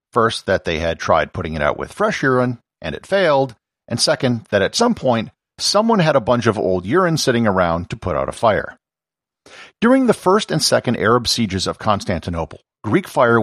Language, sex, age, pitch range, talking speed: English, male, 50-69, 95-135 Hz, 200 wpm